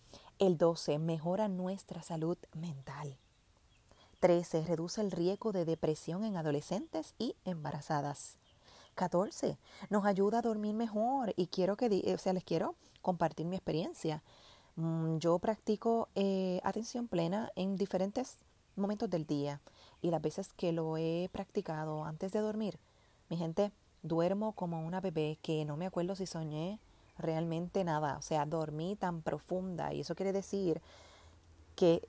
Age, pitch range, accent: 30-49, 160-195 Hz, American